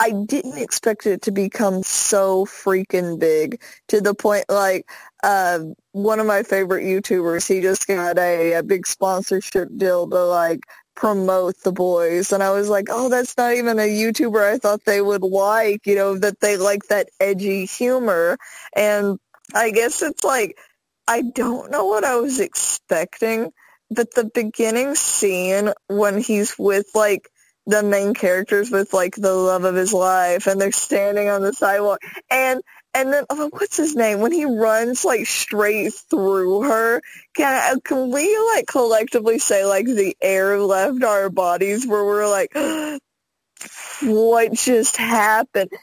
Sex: female